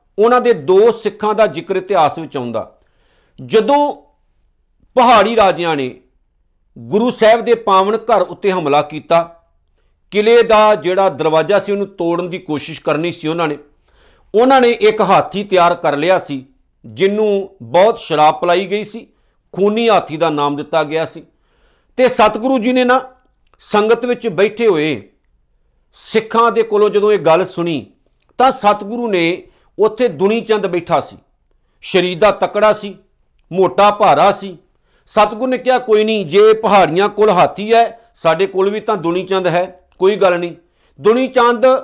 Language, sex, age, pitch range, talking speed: Punjabi, male, 50-69, 170-220 Hz, 130 wpm